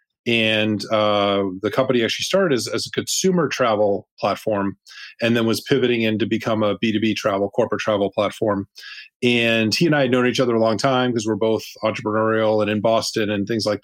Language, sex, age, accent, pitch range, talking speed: English, male, 30-49, American, 105-120 Hz, 195 wpm